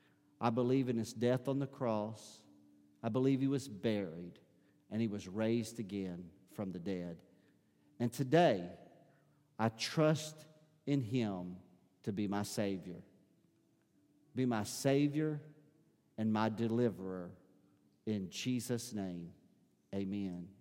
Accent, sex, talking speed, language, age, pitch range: American, male, 120 wpm, English, 50-69, 95-125 Hz